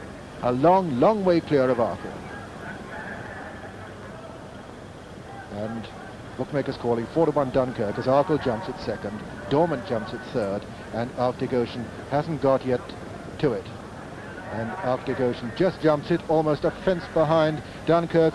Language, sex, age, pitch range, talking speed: English, male, 60-79, 135-185 Hz, 130 wpm